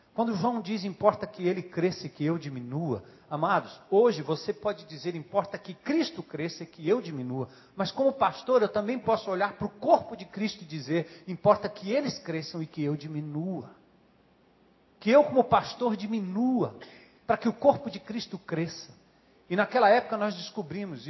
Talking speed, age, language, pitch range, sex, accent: 180 wpm, 50-69, Portuguese, 175-235 Hz, male, Brazilian